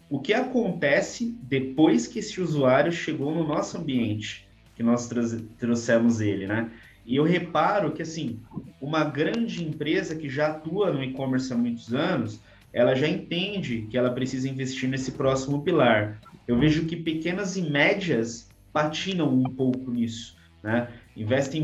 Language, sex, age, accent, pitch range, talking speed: Portuguese, male, 20-39, Brazilian, 125-165 Hz, 150 wpm